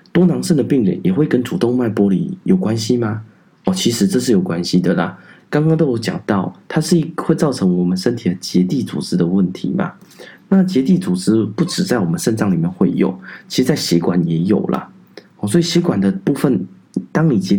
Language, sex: Chinese, male